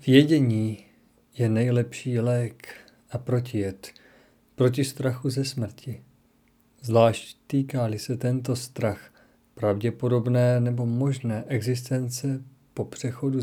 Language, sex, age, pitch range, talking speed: Czech, male, 40-59, 115-135 Hz, 95 wpm